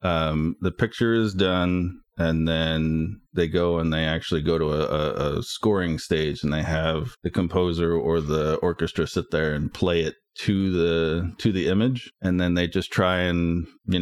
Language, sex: English, male